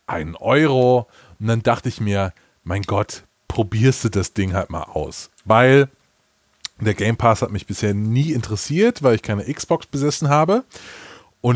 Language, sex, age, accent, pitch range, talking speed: German, male, 20-39, German, 110-145 Hz, 165 wpm